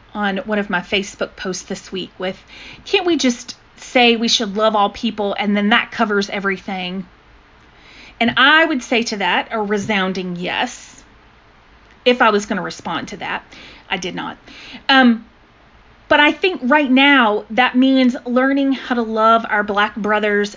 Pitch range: 205-255 Hz